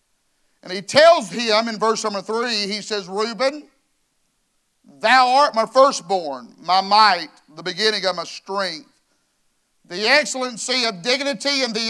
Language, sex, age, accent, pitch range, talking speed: English, male, 50-69, American, 195-255 Hz, 140 wpm